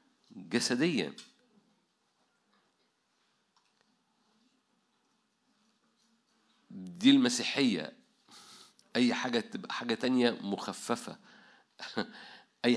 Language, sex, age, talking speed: Arabic, male, 50-69, 45 wpm